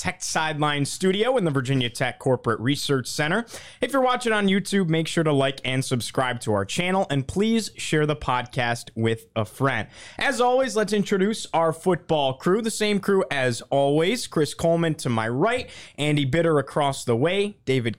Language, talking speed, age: English, 185 wpm, 20-39